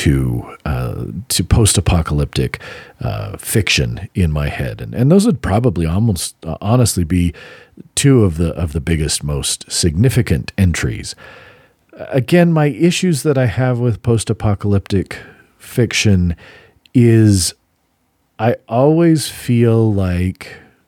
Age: 40-59